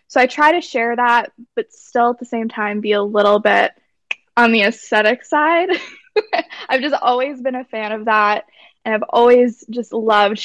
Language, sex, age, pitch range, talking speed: English, female, 20-39, 225-270 Hz, 190 wpm